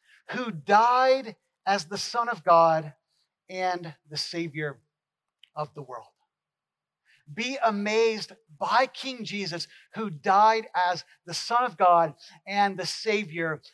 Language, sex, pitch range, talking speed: English, male, 165-210 Hz, 120 wpm